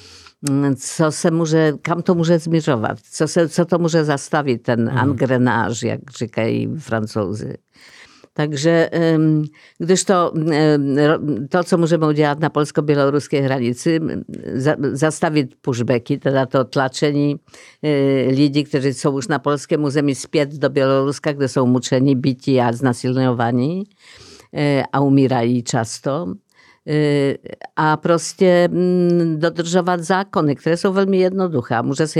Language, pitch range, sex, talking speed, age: Czech, 135-165 Hz, female, 115 wpm, 50-69